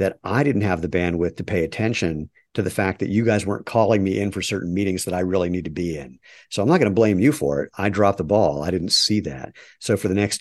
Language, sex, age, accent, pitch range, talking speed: English, male, 50-69, American, 90-110 Hz, 290 wpm